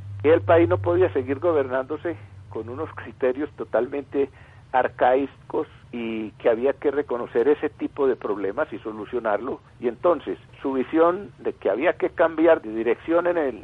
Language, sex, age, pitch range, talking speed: Spanish, male, 50-69, 120-160 Hz, 155 wpm